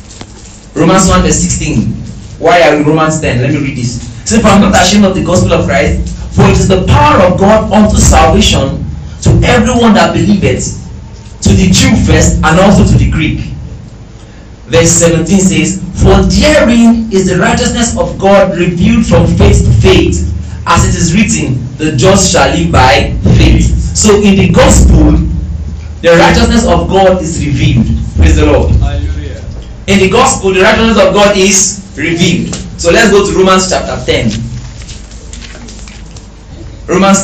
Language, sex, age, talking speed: English, male, 40-59, 165 wpm